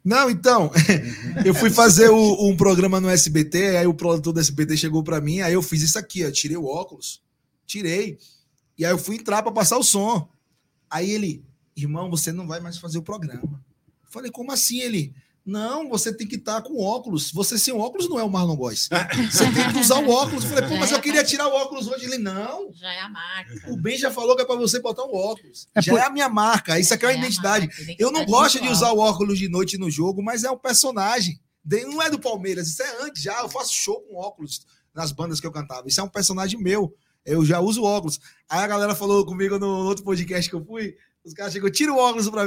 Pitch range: 165-225 Hz